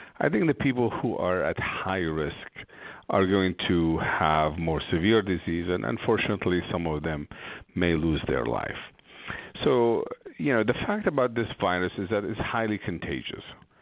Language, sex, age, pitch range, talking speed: English, male, 50-69, 85-110 Hz, 165 wpm